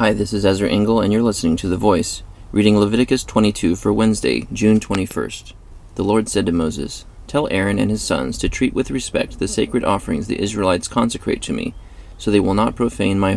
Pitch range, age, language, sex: 95-110 Hz, 30-49, English, male